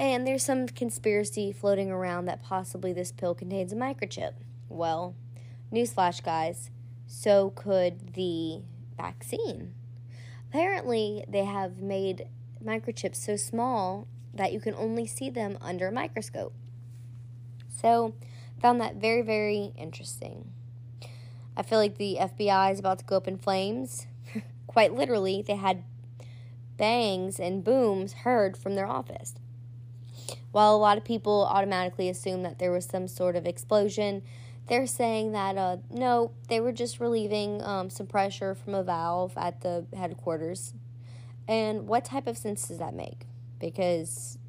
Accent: American